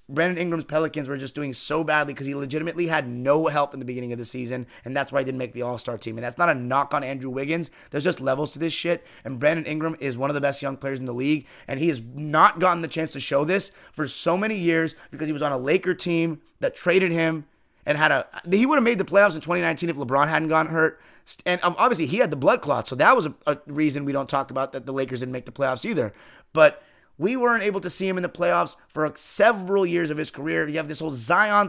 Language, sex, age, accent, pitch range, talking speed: English, male, 30-49, American, 135-175 Hz, 265 wpm